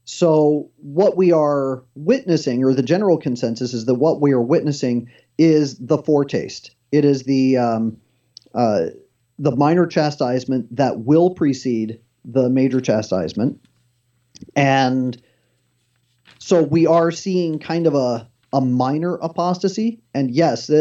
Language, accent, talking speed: English, American, 130 wpm